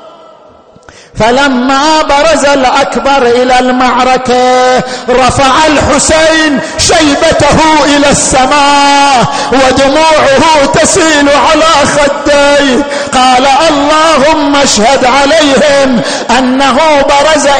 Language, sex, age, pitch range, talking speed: Arabic, male, 50-69, 255-295 Hz, 70 wpm